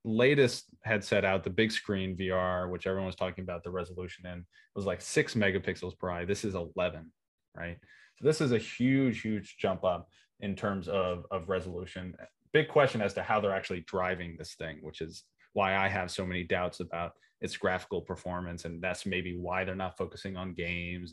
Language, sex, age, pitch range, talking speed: English, male, 20-39, 90-105 Hz, 200 wpm